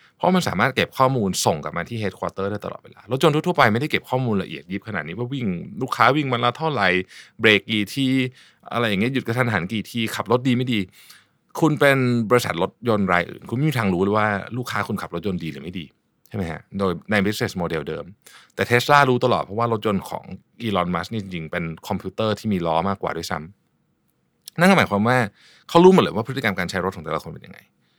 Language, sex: Thai, male